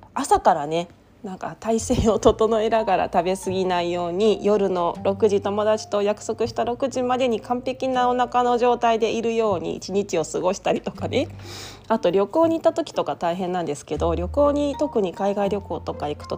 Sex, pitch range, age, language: female, 185-250 Hz, 20-39, Japanese